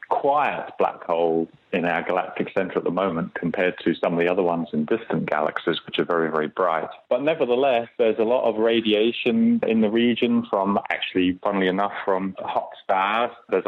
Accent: British